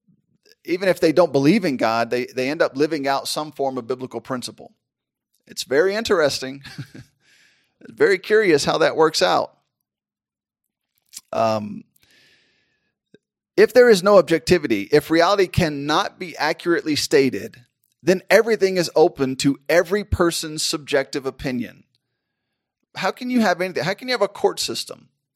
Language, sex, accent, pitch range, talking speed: English, male, American, 140-190 Hz, 140 wpm